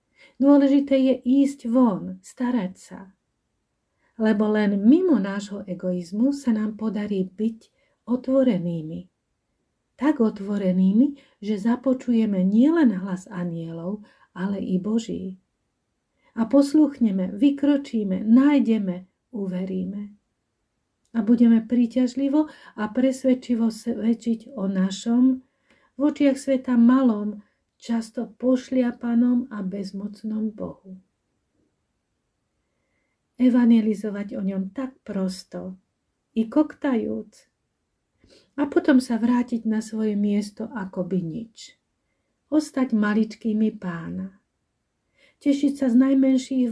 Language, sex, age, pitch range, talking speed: Slovak, female, 40-59, 205-260 Hz, 90 wpm